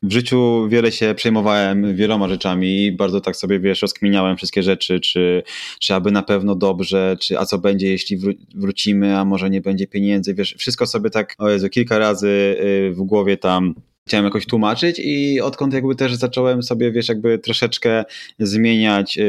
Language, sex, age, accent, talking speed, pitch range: Polish, male, 20-39, native, 175 wpm, 100-120 Hz